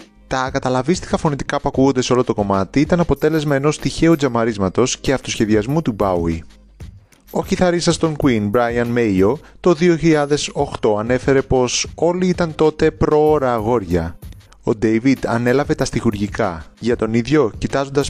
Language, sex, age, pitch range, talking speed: Greek, male, 30-49, 110-150 Hz, 140 wpm